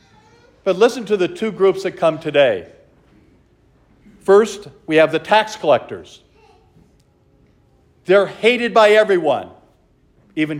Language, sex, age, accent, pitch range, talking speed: English, male, 50-69, American, 130-185 Hz, 115 wpm